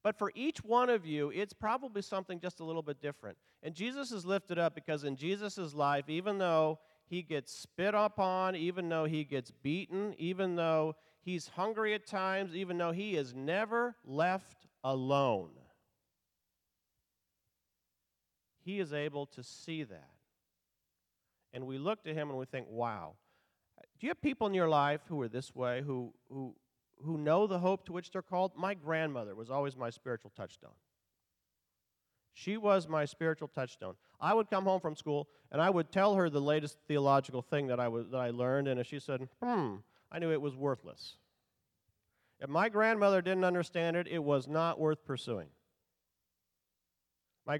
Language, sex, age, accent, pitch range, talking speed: English, male, 40-59, American, 130-185 Hz, 175 wpm